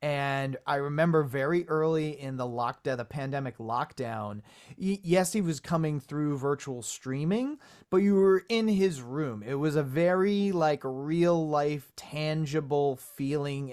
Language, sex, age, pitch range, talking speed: English, male, 30-49, 130-160 Hz, 145 wpm